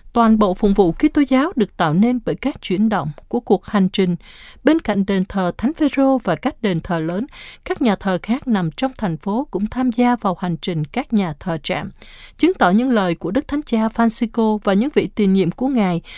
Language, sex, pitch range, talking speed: Vietnamese, female, 190-250 Hz, 235 wpm